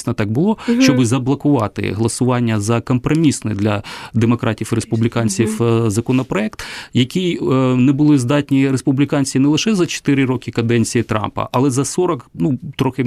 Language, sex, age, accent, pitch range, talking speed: Ukrainian, male, 30-49, native, 120-155 Hz, 140 wpm